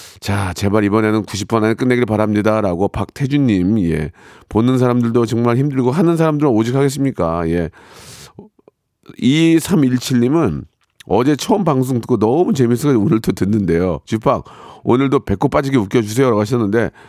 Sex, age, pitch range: male, 40-59, 110-155 Hz